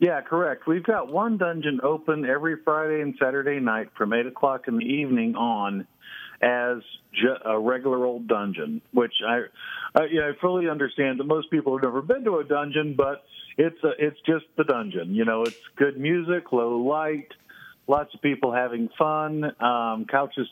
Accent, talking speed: American, 180 wpm